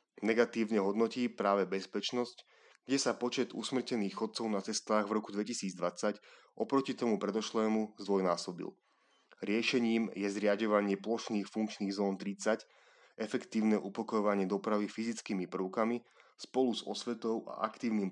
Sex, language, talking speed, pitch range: male, Slovak, 115 wpm, 100-115 Hz